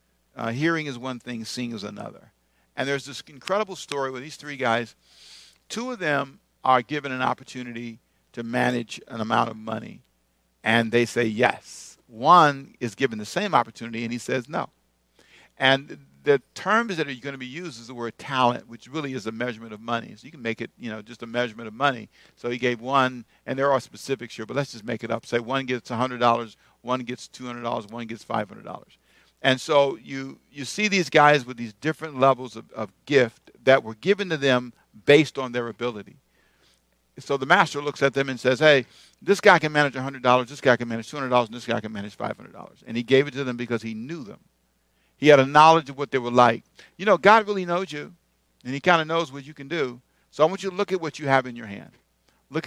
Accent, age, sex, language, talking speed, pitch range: American, 50-69, male, English, 225 wpm, 115-145 Hz